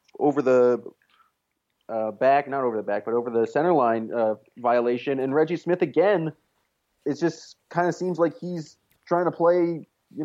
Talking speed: 175 wpm